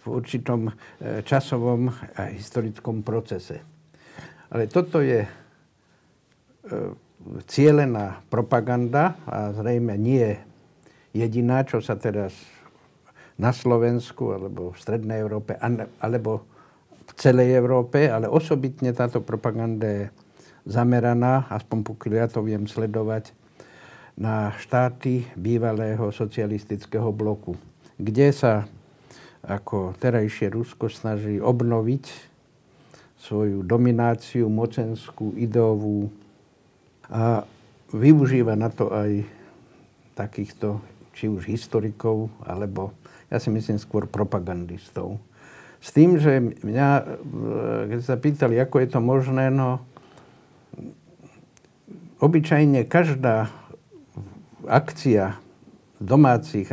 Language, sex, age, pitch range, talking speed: Slovak, male, 60-79, 105-125 Hz, 95 wpm